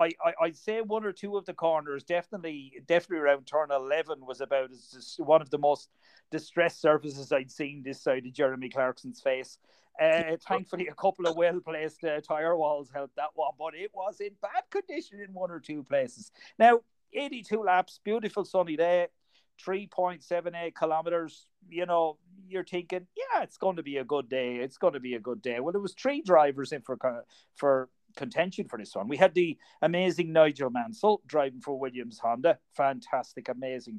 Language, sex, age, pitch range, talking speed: English, male, 40-59, 140-195 Hz, 185 wpm